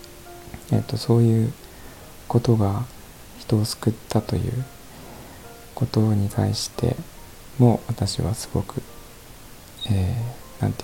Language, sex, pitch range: Japanese, male, 95-115 Hz